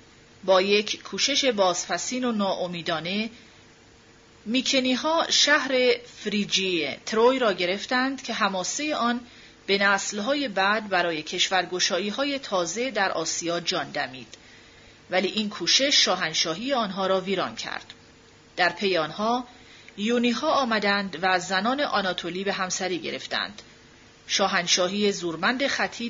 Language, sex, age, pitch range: Persian, female, 30-49, 180-245 Hz